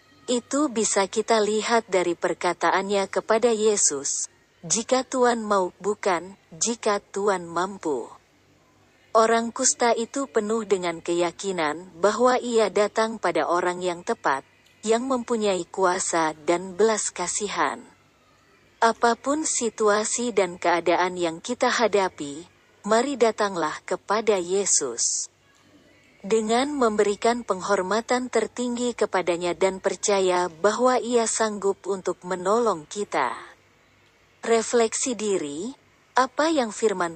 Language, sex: Indonesian, female